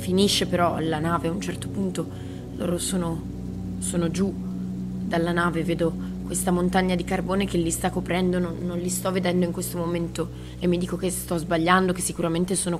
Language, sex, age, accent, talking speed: Italian, female, 20-39, native, 190 wpm